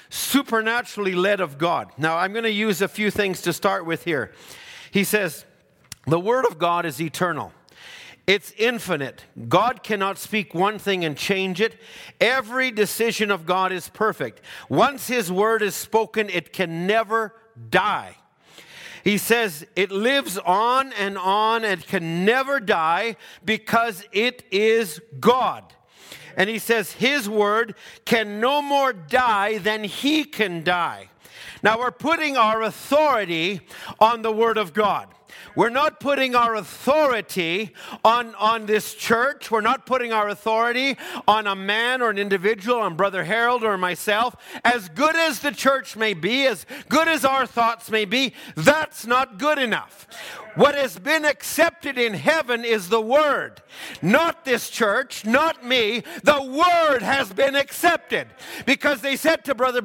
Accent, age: American, 50-69